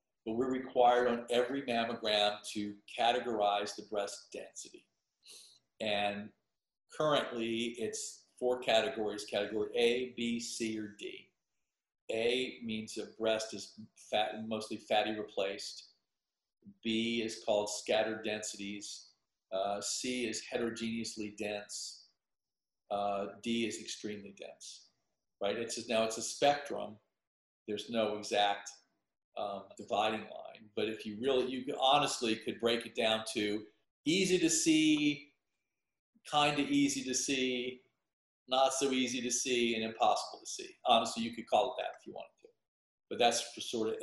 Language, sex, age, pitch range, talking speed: English, male, 50-69, 105-125 Hz, 140 wpm